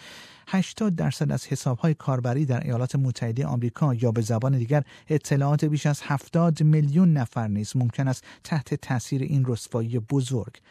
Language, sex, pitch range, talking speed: Persian, male, 120-155 Hz, 150 wpm